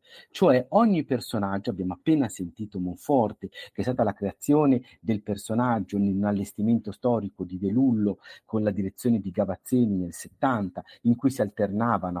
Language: Italian